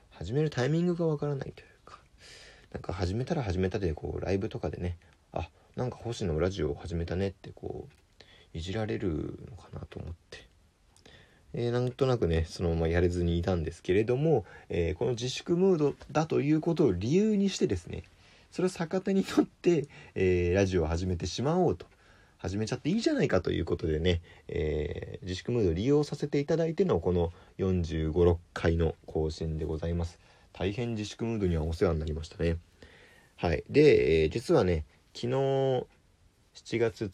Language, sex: Japanese, male